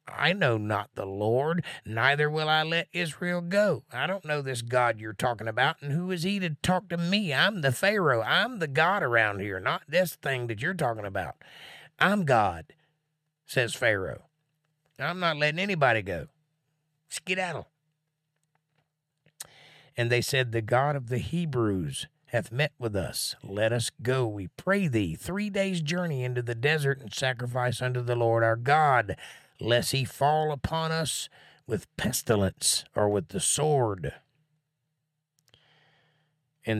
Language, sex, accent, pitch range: English, male, American, 115-155 Hz